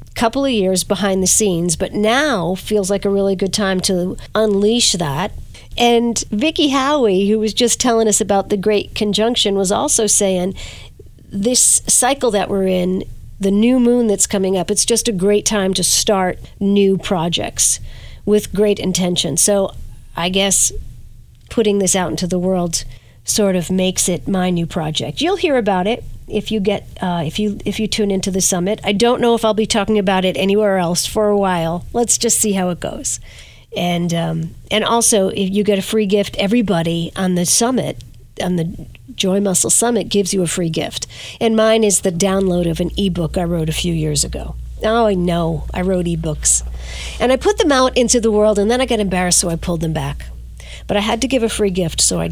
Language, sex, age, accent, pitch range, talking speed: English, female, 50-69, American, 175-215 Hz, 205 wpm